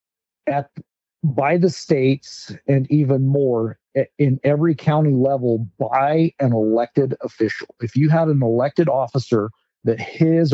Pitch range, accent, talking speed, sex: 120-145 Hz, American, 130 wpm, male